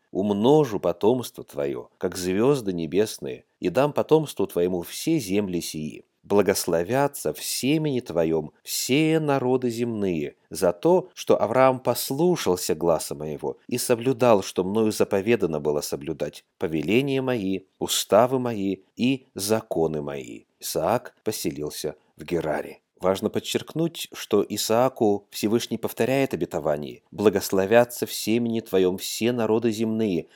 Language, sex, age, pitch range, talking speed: Russian, male, 30-49, 95-125 Hz, 115 wpm